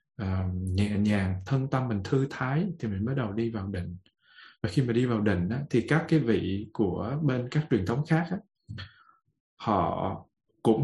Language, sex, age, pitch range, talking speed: Vietnamese, male, 20-39, 110-150 Hz, 195 wpm